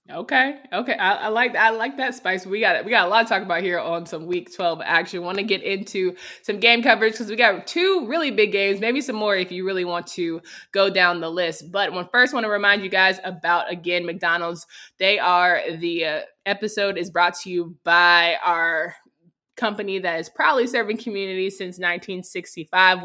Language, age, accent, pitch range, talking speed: English, 20-39, American, 175-230 Hz, 210 wpm